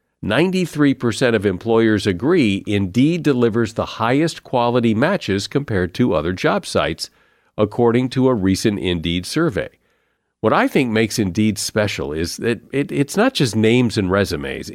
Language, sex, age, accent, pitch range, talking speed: English, male, 50-69, American, 100-135 Hz, 140 wpm